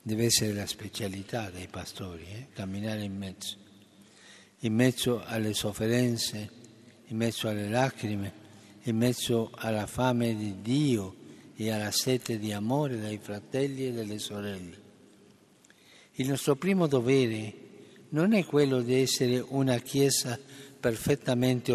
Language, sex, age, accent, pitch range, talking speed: Italian, male, 60-79, native, 110-135 Hz, 125 wpm